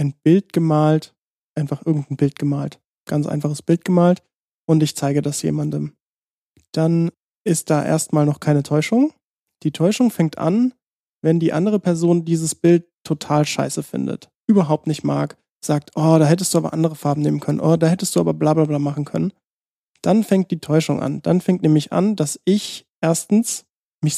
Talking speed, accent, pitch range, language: 180 wpm, German, 150-180 Hz, German